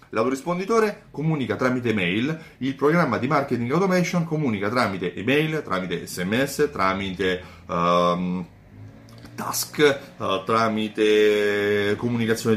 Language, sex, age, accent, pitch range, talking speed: Italian, male, 30-49, native, 110-145 Hz, 95 wpm